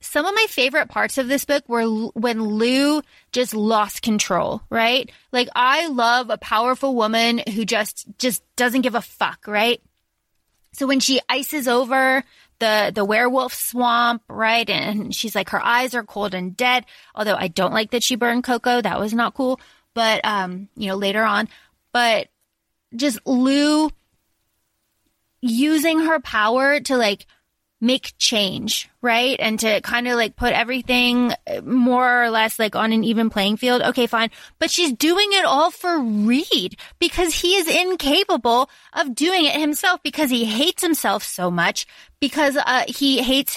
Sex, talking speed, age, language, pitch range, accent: female, 165 wpm, 20-39, English, 220-280 Hz, American